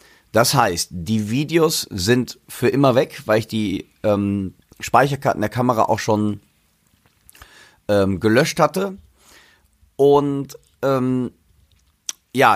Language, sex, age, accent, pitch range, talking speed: German, male, 40-59, German, 105-130 Hz, 110 wpm